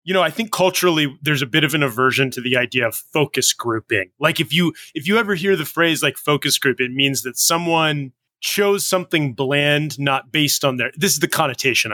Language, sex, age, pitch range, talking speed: English, male, 20-39, 135-175 Hz, 225 wpm